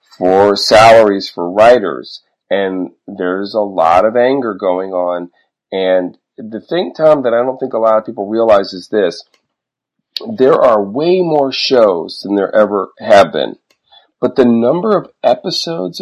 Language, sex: English, male